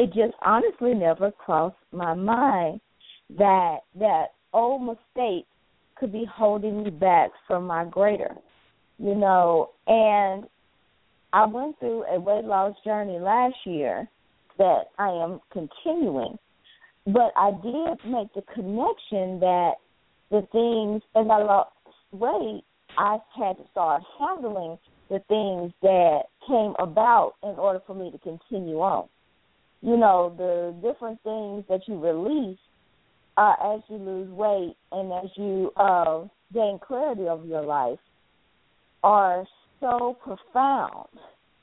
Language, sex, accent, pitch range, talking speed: English, female, American, 185-235 Hz, 130 wpm